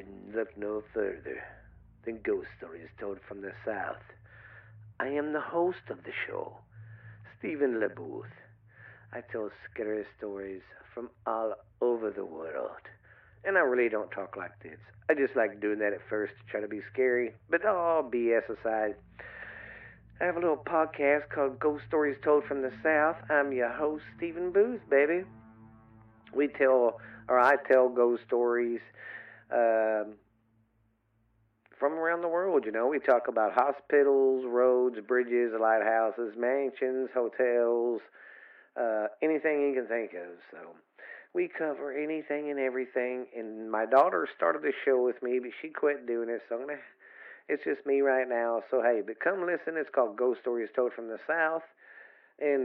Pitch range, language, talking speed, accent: 110-145 Hz, English, 160 wpm, American